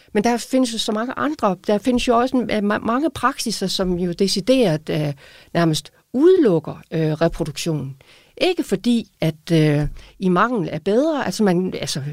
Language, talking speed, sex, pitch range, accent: Danish, 160 wpm, female, 185-260 Hz, native